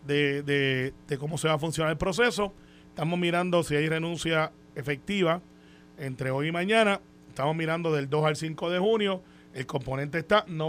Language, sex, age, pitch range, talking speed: Spanish, male, 30-49, 140-180 Hz, 180 wpm